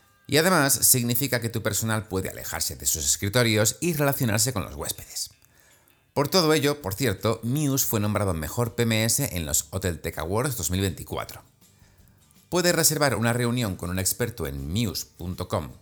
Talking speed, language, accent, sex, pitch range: 155 wpm, Spanish, Spanish, male, 90-120 Hz